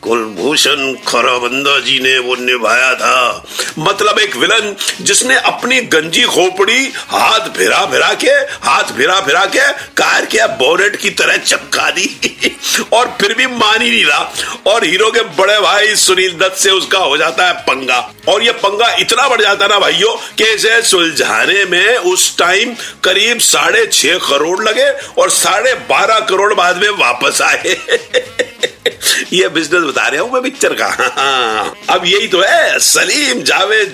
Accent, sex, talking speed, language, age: native, male, 150 wpm, Hindi, 50-69